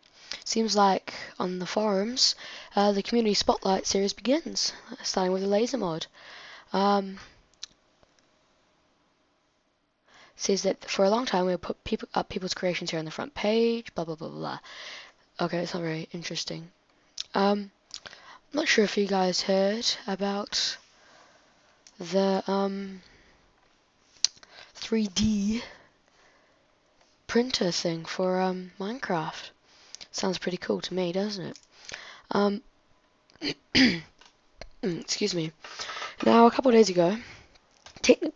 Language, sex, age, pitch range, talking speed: English, female, 10-29, 180-215 Hz, 120 wpm